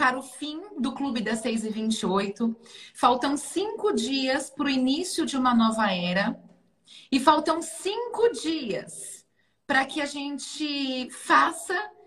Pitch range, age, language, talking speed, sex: 245-290 Hz, 30-49, Portuguese, 130 wpm, female